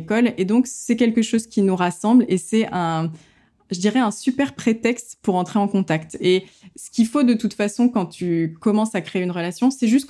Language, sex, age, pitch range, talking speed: French, female, 20-39, 180-225 Hz, 215 wpm